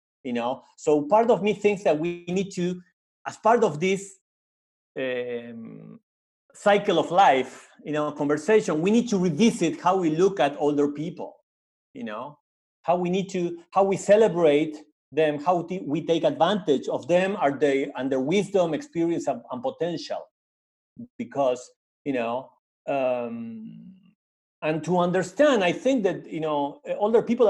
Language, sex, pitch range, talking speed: English, male, 155-215 Hz, 155 wpm